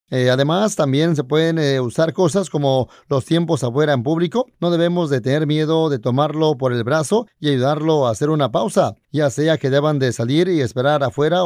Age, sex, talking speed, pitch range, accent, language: 40-59, male, 205 wpm, 140-180 Hz, Mexican, Spanish